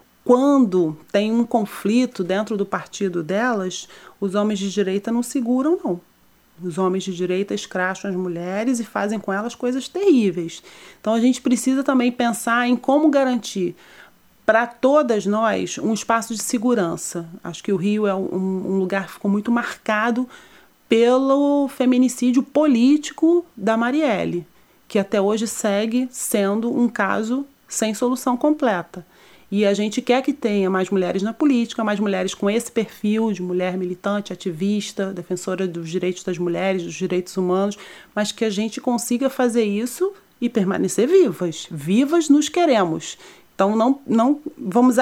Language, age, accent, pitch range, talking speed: Portuguese, 40-59, Brazilian, 190-250 Hz, 150 wpm